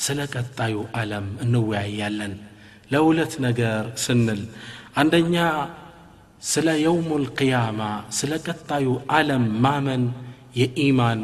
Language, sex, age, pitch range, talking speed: Amharic, male, 40-59, 110-130 Hz, 95 wpm